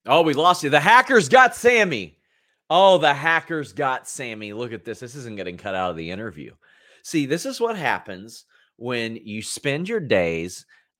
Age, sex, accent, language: 30-49, male, American, English